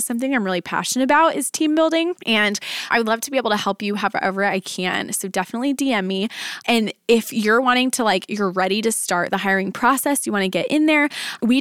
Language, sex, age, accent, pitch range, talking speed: English, female, 20-39, American, 195-260 Hz, 235 wpm